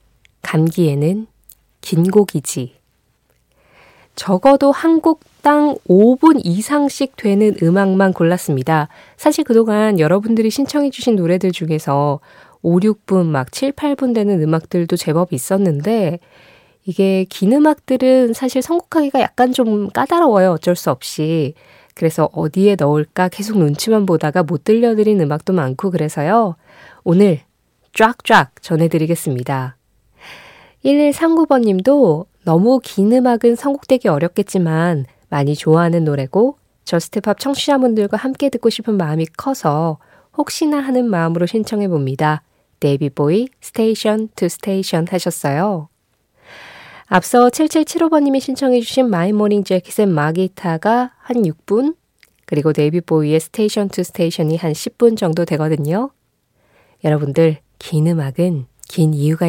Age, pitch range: 20-39, 160-235 Hz